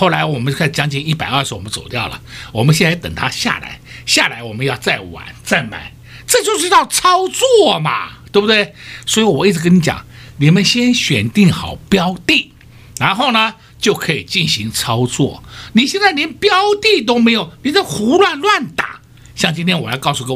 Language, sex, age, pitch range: Chinese, male, 60-79, 125-195 Hz